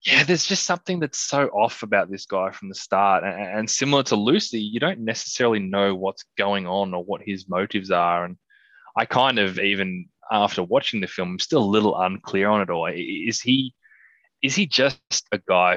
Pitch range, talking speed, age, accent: 95-125 Hz, 205 wpm, 20-39, Australian